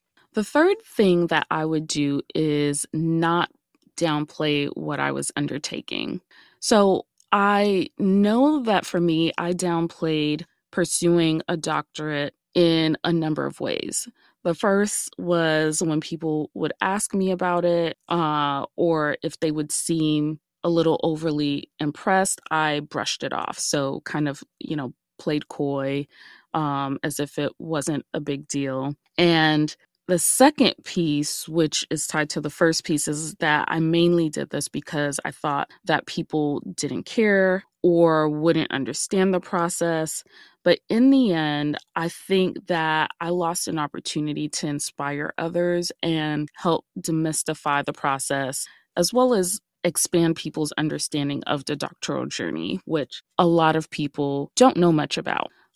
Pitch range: 150-175 Hz